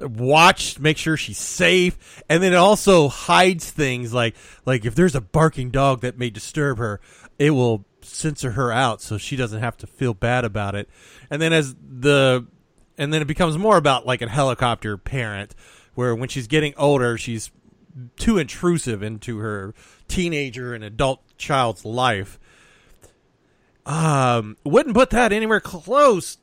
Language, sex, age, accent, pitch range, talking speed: English, male, 30-49, American, 115-160 Hz, 160 wpm